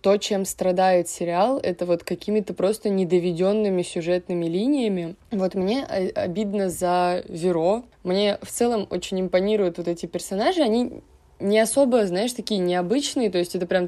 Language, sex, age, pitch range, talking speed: Russian, female, 20-39, 175-205 Hz, 145 wpm